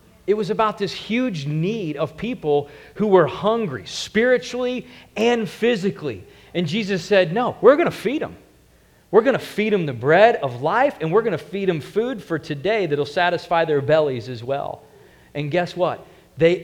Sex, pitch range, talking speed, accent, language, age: male, 175-260 Hz, 190 wpm, American, English, 40-59